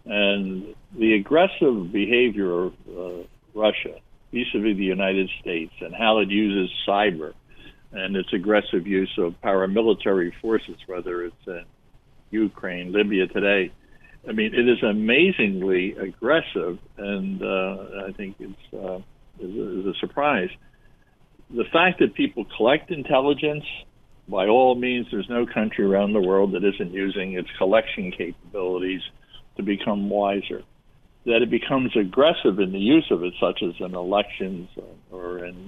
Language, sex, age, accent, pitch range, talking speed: English, male, 60-79, American, 95-115 Hz, 145 wpm